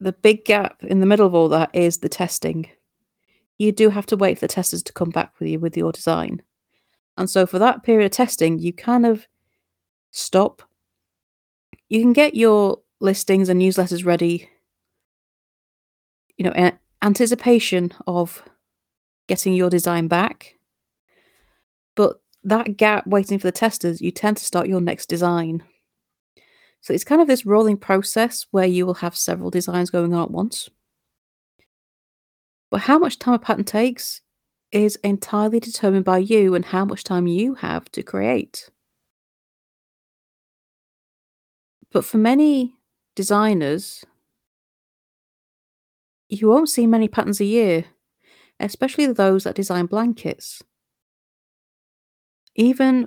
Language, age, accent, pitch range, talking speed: English, 30-49, British, 180-225 Hz, 140 wpm